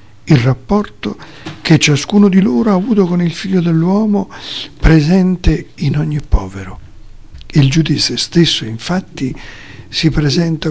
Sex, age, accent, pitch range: male, 50-69, native, 115-170 Hz